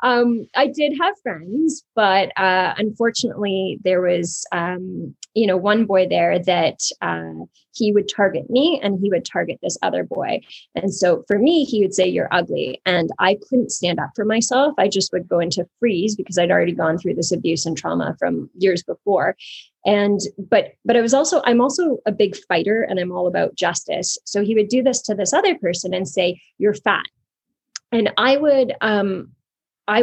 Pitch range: 185-245 Hz